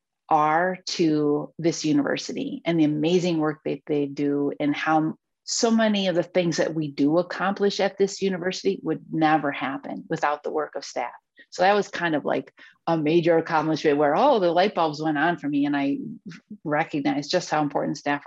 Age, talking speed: 30-49, 190 wpm